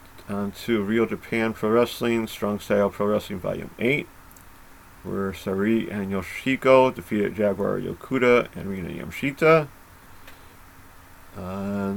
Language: English